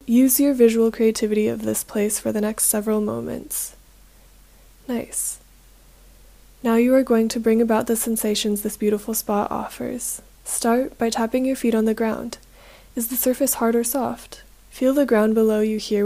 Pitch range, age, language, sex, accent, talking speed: 220-250 Hz, 10-29, English, female, American, 170 wpm